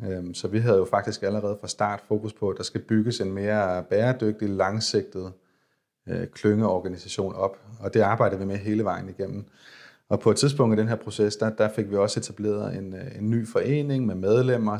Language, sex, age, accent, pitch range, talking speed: Danish, male, 30-49, native, 100-110 Hz, 200 wpm